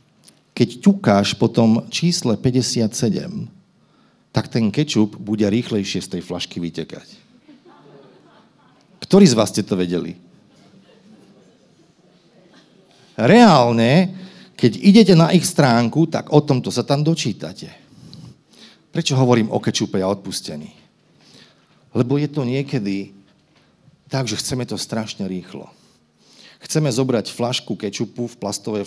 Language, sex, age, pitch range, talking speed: Slovak, male, 40-59, 105-145 Hz, 110 wpm